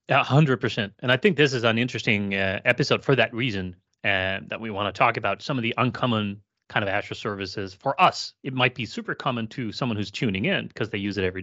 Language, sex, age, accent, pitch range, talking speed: English, male, 30-49, American, 100-125 Hz, 250 wpm